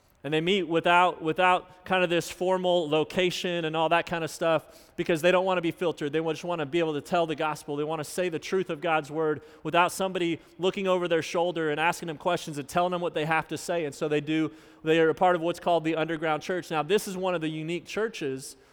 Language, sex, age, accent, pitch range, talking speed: English, male, 30-49, American, 160-190 Hz, 265 wpm